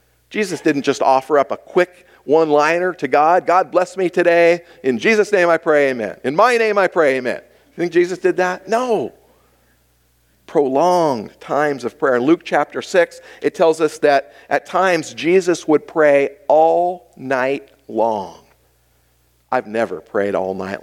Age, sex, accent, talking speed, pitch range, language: 50-69, male, American, 165 wpm, 130-190 Hz, English